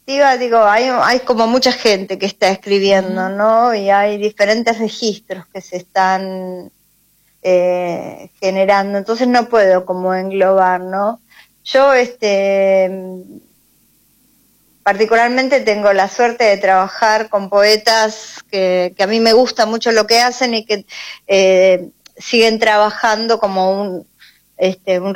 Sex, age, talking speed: female, 20-39, 130 wpm